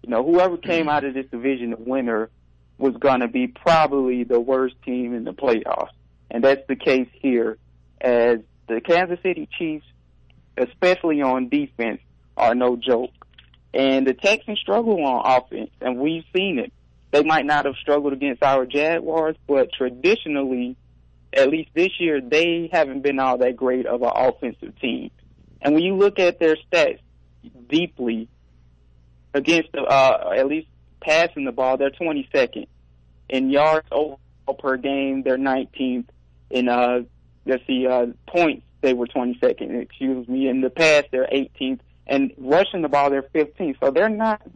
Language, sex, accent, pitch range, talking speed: English, male, American, 120-155 Hz, 165 wpm